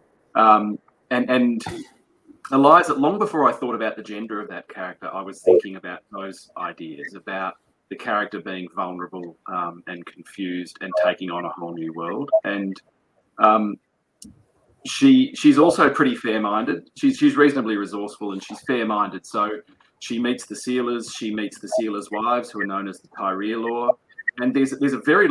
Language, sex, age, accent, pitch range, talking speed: English, male, 30-49, Australian, 95-115 Hz, 165 wpm